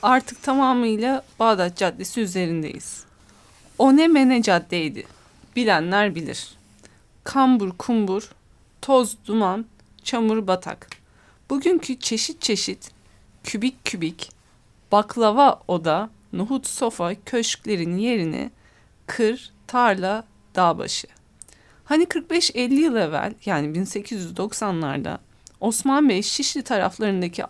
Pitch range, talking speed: 185-260 Hz, 90 wpm